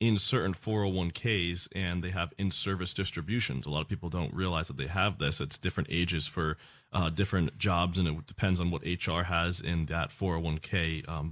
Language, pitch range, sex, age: English, 85-100 Hz, male, 30-49